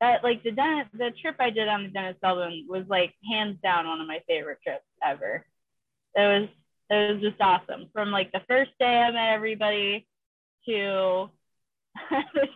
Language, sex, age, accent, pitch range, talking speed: English, female, 20-39, American, 185-230 Hz, 180 wpm